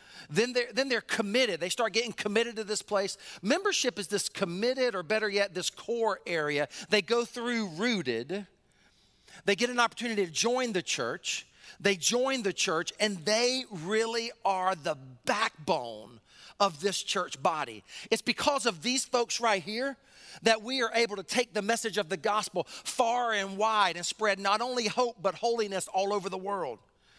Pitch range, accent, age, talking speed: 195-235 Hz, American, 40-59, 175 wpm